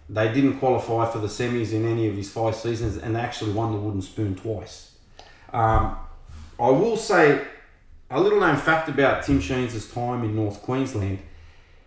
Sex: male